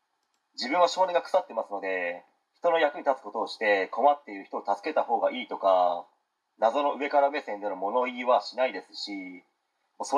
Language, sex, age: Japanese, male, 40-59